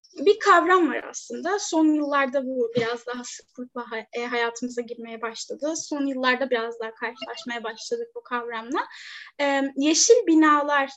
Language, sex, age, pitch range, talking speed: Turkish, female, 10-29, 245-325 Hz, 130 wpm